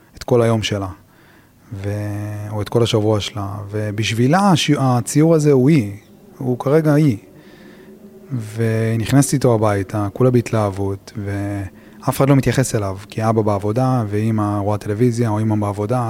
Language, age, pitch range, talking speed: Hebrew, 30-49, 105-130 Hz, 145 wpm